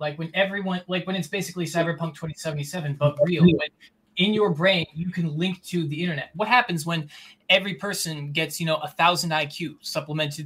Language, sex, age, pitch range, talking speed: English, male, 20-39, 155-180 Hz, 190 wpm